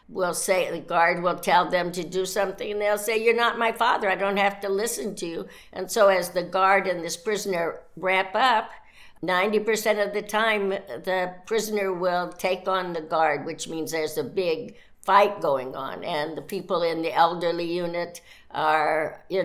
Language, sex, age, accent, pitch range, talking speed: English, female, 60-79, American, 165-200 Hz, 195 wpm